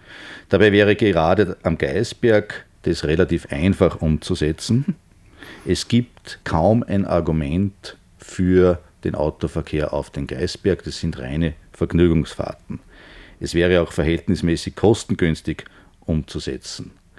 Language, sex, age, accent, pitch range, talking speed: German, male, 50-69, Austrian, 80-95 Hz, 105 wpm